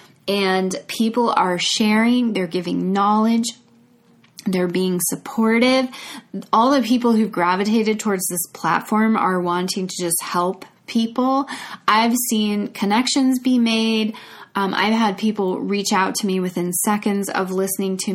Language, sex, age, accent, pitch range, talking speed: English, female, 20-39, American, 180-220 Hz, 140 wpm